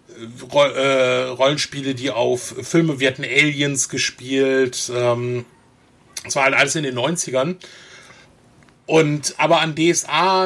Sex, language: male, German